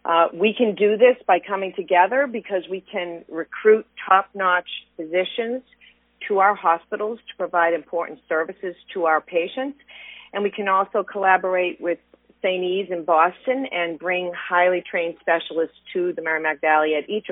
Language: English